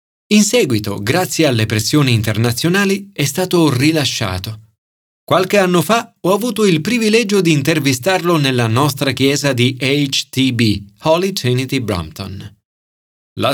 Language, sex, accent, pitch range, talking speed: Italian, male, native, 110-180 Hz, 120 wpm